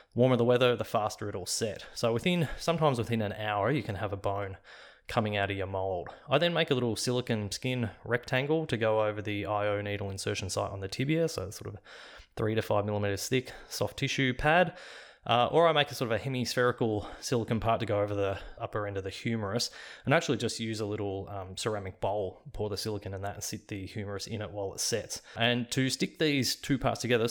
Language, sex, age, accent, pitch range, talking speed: English, male, 20-39, Australian, 105-125 Hz, 225 wpm